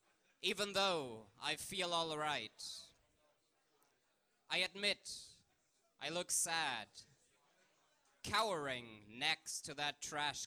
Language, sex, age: English, male, 20-39